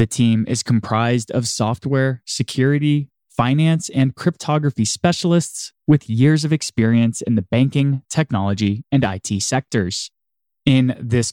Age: 20-39